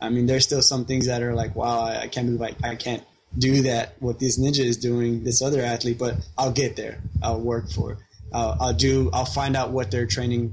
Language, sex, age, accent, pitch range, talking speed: English, male, 20-39, American, 115-130 Hz, 245 wpm